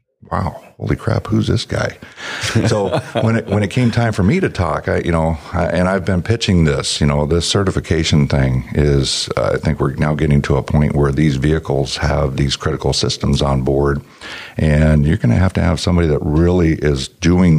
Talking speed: 210 wpm